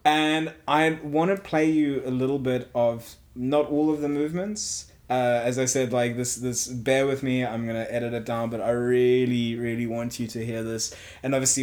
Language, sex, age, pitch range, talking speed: English, male, 20-39, 115-145 Hz, 210 wpm